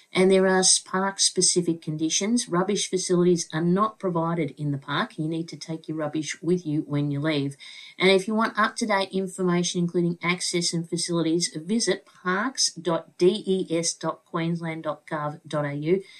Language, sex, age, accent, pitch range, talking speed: English, female, 50-69, Australian, 150-185 Hz, 135 wpm